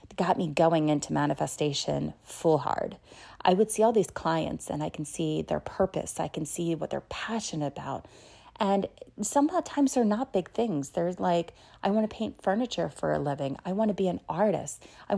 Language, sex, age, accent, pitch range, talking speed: English, female, 30-49, American, 165-225 Hz, 200 wpm